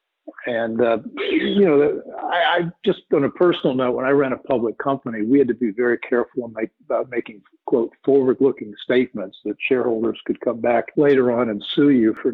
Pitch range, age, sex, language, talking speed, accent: 115-140 Hz, 50-69, male, English, 200 wpm, American